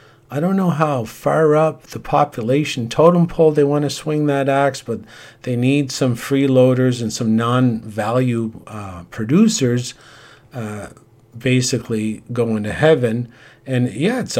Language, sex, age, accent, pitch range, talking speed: English, male, 50-69, American, 120-140 Hz, 140 wpm